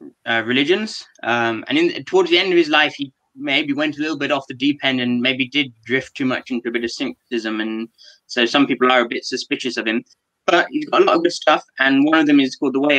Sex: male